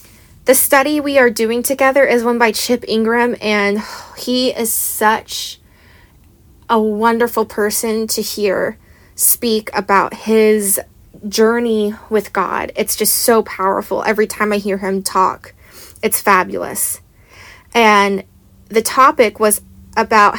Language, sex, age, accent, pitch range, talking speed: English, female, 20-39, American, 180-240 Hz, 125 wpm